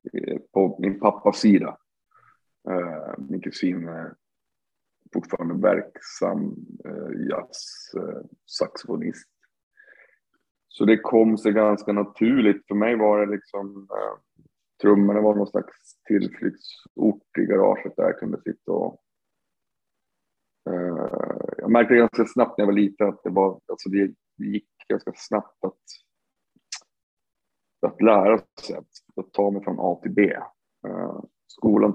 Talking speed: 115 wpm